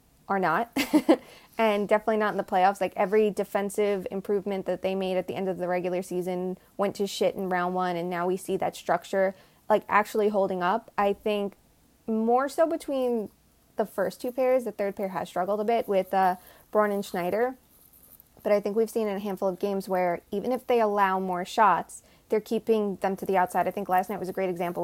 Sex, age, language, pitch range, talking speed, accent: female, 20-39, English, 180-215 Hz, 215 wpm, American